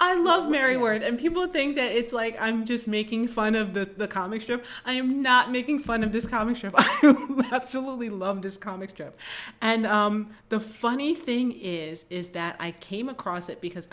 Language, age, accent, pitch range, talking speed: English, 30-49, American, 170-225 Hz, 205 wpm